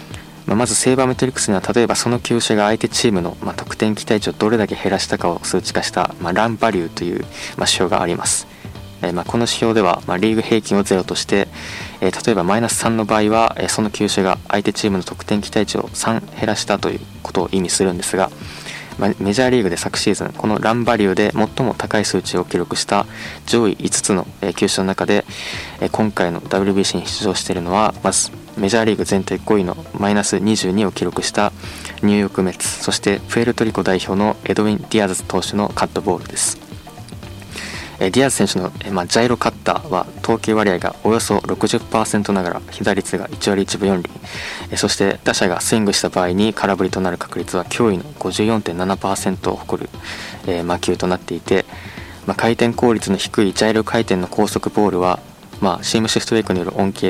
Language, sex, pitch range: Japanese, male, 90-110 Hz